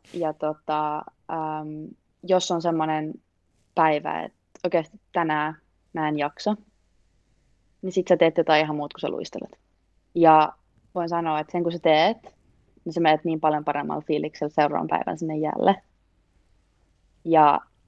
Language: Finnish